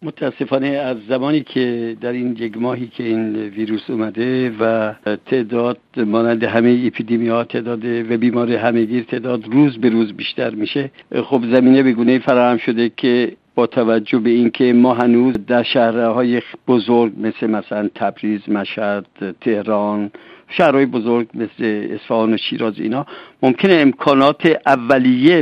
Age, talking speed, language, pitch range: 60-79, 140 wpm, Persian, 120-155 Hz